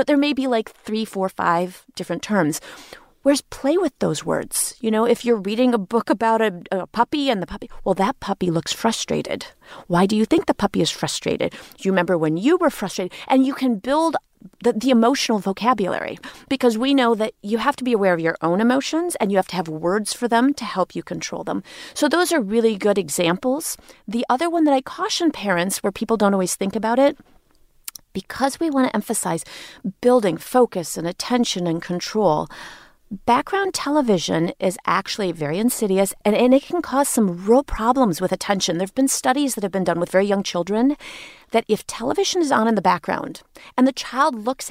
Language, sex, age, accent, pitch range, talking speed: English, female, 30-49, American, 185-255 Hz, 205 wpm